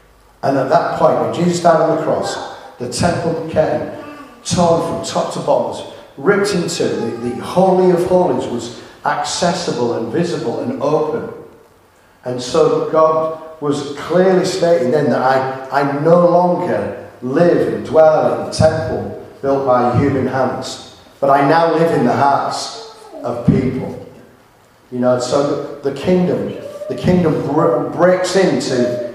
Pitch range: 125-165 Hz